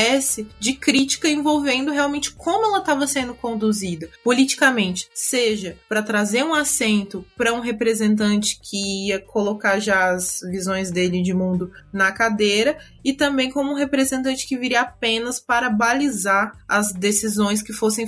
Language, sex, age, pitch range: Portuguese, female, 20-39, 205-245 Hz